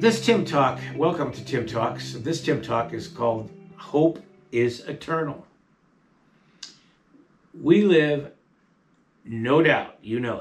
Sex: male